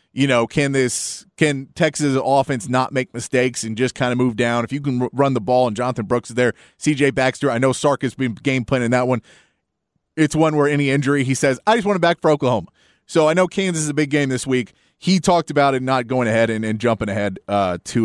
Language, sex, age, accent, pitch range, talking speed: English, male, 30-49, American, 120-150 Hz, 245 wpm